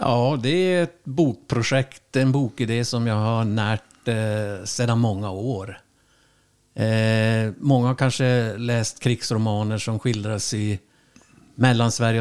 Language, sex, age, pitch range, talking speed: Swedish, male, 60-79, 110-135 Hz, 125 wpm